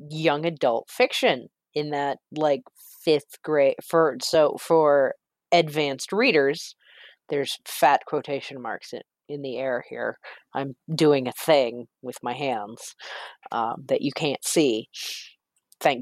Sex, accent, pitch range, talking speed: female, American, 140-195 Hz, 130 wpm